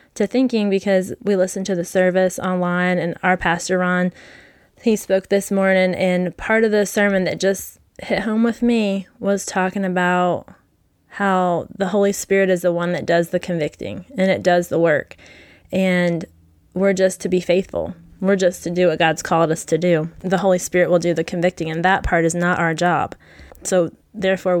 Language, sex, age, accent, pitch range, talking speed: English, female, 20-39, American, 175-200 Hz, 195 wpm